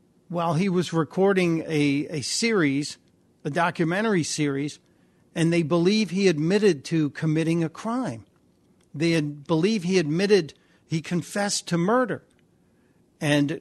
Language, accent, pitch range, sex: English, American, 150-200 Hz, male